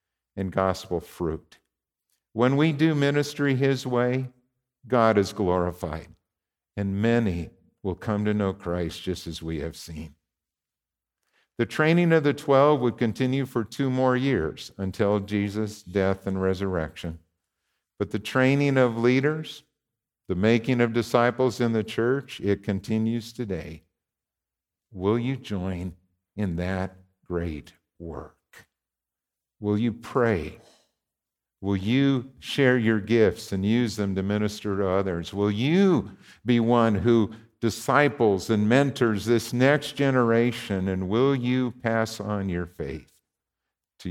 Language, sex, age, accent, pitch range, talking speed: English, male, 50-69, American, 90-120 Hz, 130 wpm